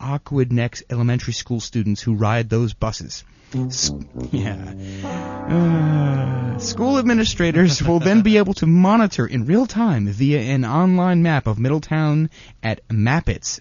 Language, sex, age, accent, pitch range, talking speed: English, male, 30-49, American, 110-150 Hz, 130 wpm